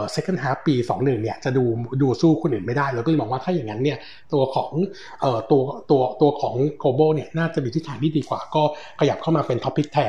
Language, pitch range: Thai, 125-160 Hz